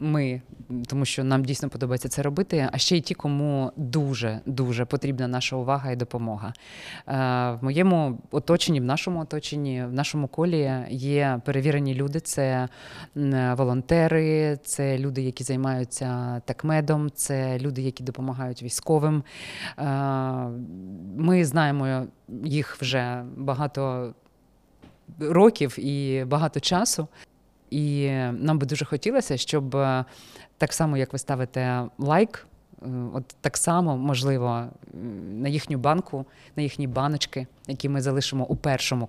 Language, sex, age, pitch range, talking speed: Ukrainian, female, 20-39, 125-150 Hz, 120 wpm